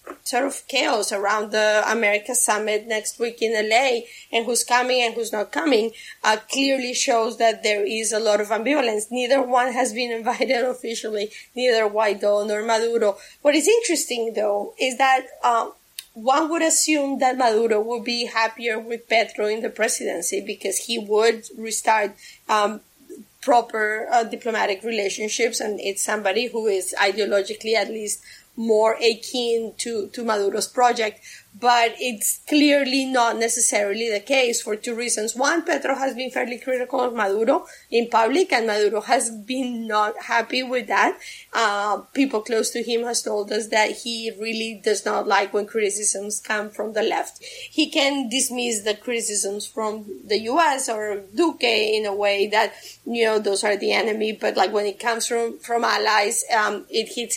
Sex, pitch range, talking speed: female, 215-245 Hz, 165 wpm